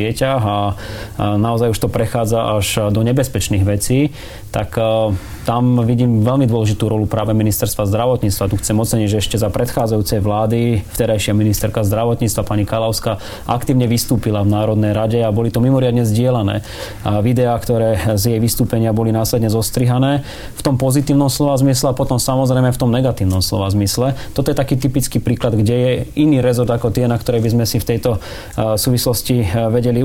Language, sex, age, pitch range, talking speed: Slovak, male, 30-49, 105-125 Hz, 170 wpm